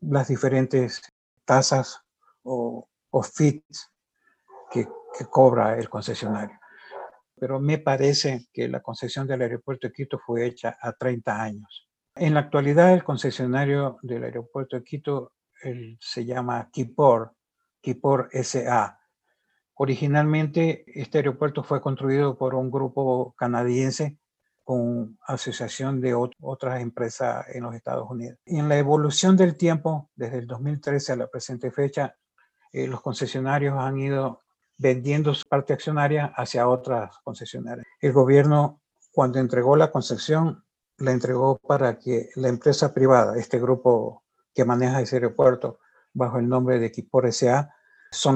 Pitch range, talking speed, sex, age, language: 125-145 Hz, 135 wpm, male, 60-79, English